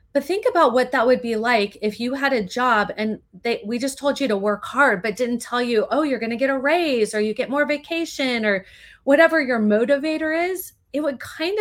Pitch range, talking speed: 215-280 Hz, 235 wpm